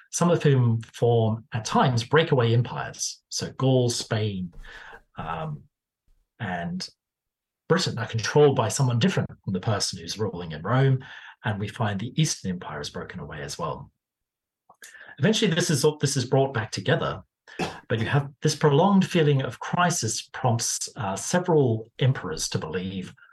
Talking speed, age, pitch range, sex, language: 155 wpm, 40-59, 110-145 Hz, male, English